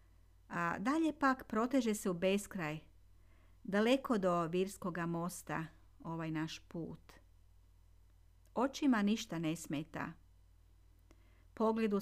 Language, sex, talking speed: Croatian, female, 95 wpm